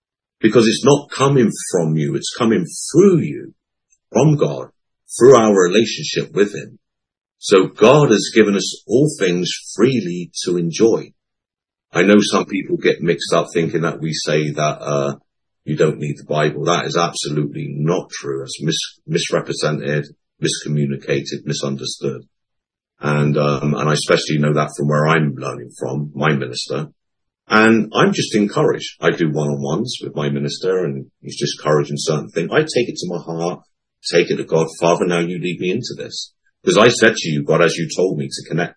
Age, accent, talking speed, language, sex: 50-69, British, 180 wpm, English, male